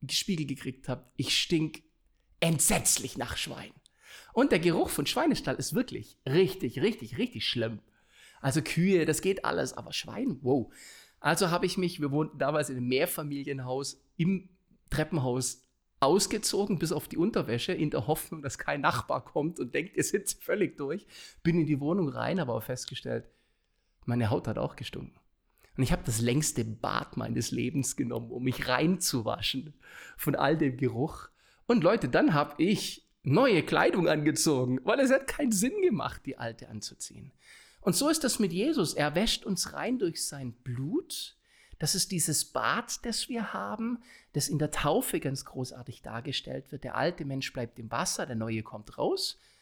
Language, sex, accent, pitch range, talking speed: German, male, German, 130-185 Hz, 175 wpm